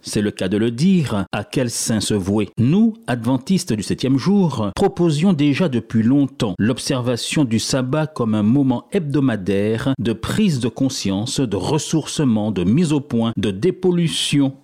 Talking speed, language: 160 wpm, French